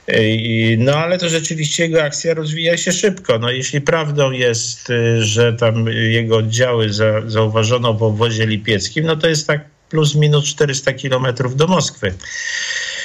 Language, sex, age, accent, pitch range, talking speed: Polish, male, 50-69, native, 115-155 Hz, 145 wpm